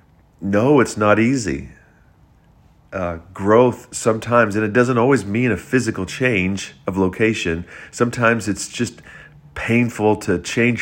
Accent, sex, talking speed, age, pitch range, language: American, male, 130 wpm, 40-59, 85-110 Hz, English